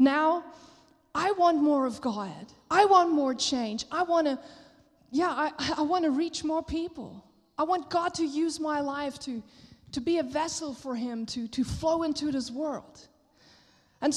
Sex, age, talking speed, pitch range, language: female, 20-39, 180 wpm, 265-340 Hz, English